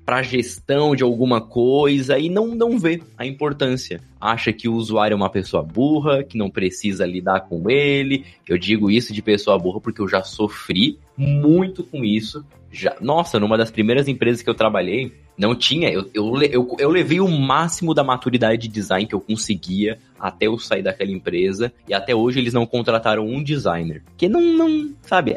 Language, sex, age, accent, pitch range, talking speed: Portuguese, male, 20-39, Brazilian, 100-140 Hz, 180 wpm